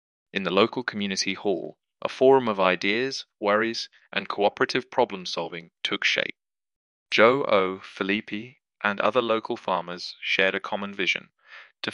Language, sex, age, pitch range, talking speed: English, male, 20-39, 95-110 Hz, 135 wpm